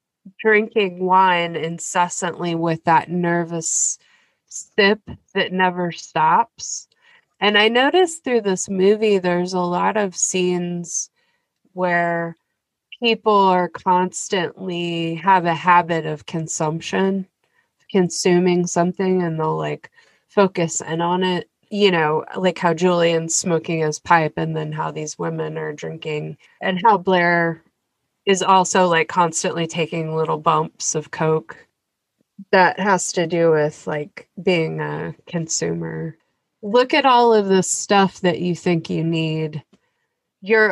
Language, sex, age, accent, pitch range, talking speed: English, female, 20-39, American, 160-190 Hz, 130 wpm